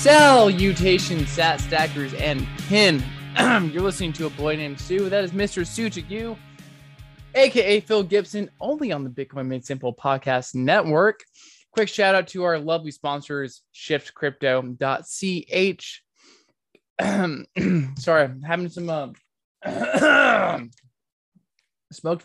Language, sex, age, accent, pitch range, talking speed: English, male, 20-39, American, 140-185 Hz, 110 wpm